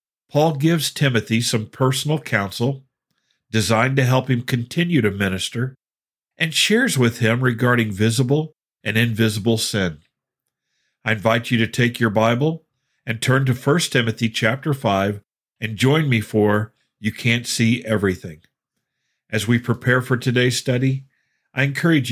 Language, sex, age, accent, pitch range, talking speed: English, male, 50-69, American, 110-130 Hz, 140 wpm